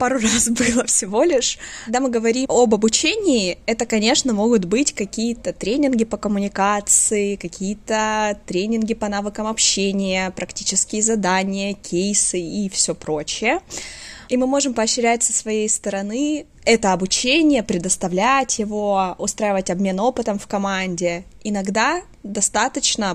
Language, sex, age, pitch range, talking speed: Russian, female, 20-39, 185-230 Hz, 120 wpm